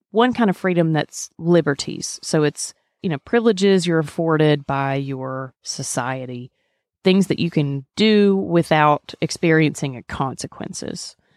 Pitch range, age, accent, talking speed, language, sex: 140-170 Hz, 30-49, American, 125 wpm, English, female